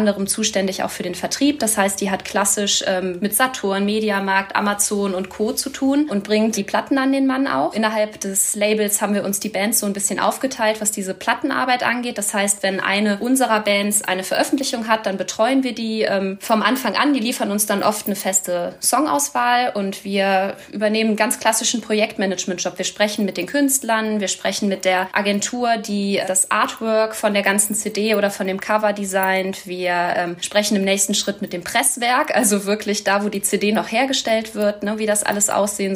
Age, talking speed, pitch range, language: 20-39, 195 wpm, 195-220 Hz, German